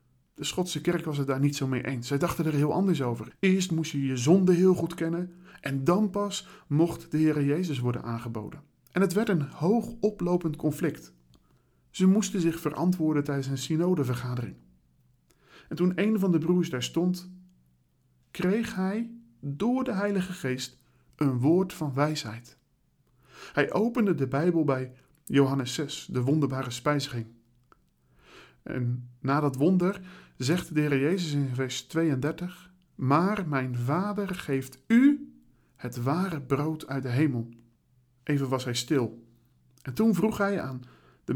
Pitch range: 125-175 Hz